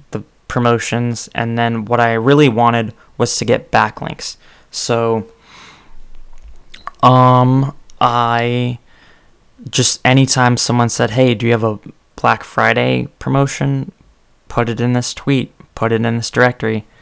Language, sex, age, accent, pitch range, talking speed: English, male, 20-39, American, 110-125 Hz, 125 wpm